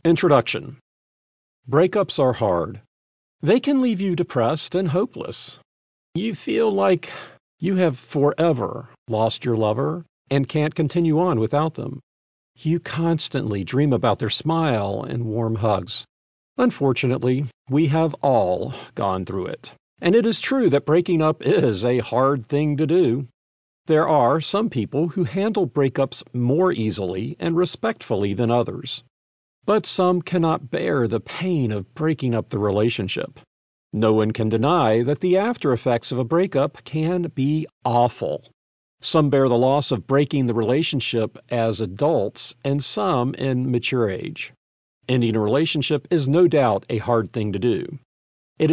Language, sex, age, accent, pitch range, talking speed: English, male, 50-69, American, 115-160 Hz, 145 wpm